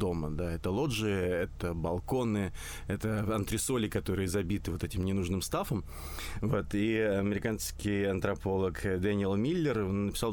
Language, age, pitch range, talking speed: Russian, 20-39, 90-110 Hz, 115 wpm